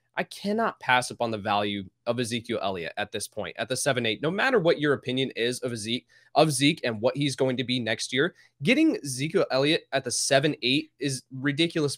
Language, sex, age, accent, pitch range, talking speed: English, male, 20-39, American, 120-150 Hz, 200 wpm